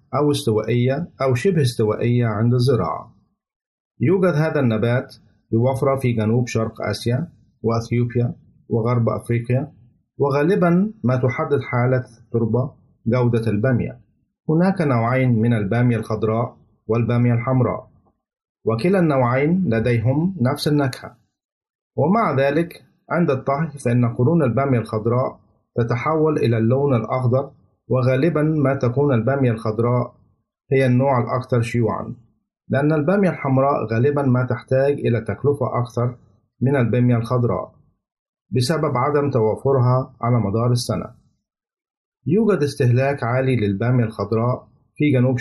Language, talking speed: Arabic, 110 wpm